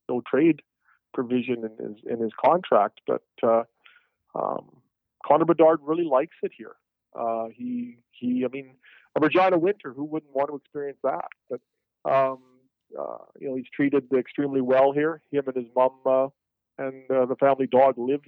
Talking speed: 165 wpm